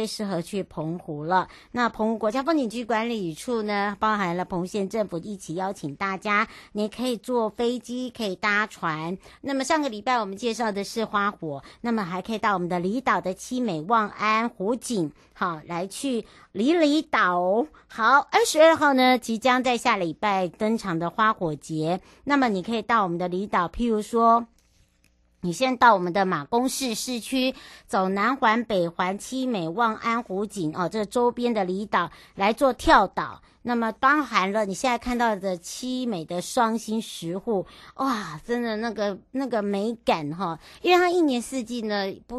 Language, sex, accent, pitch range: Chinese, male, American, 185-240 Hz